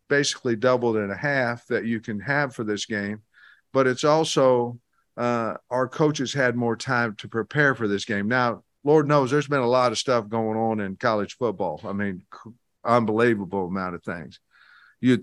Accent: American